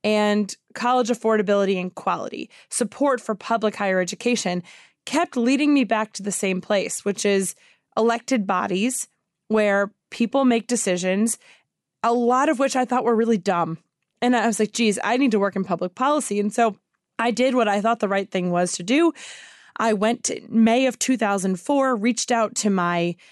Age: 20-39